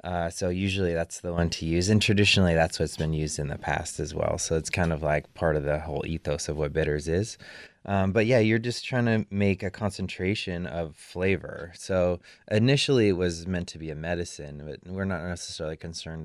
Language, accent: English, American